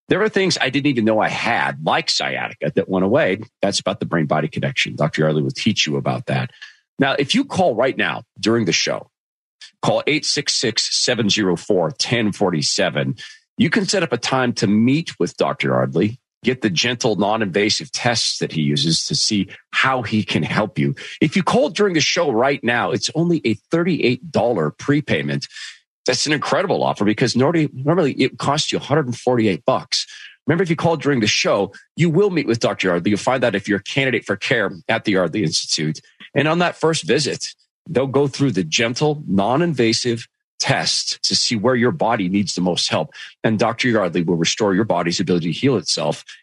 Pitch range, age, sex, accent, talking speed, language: 95-150 Hz, 40-59, male, American, 190 wpm, English